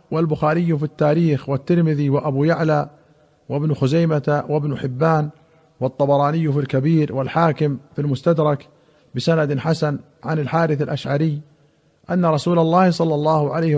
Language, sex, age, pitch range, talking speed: Arabic, male, 50-69, 145-170 Hz, 120 wpm